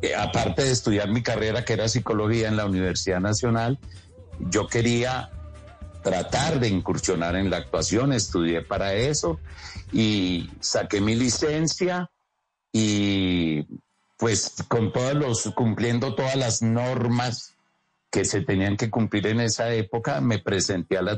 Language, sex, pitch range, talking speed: Spanish, male, 105-135 Hz, 135 wpm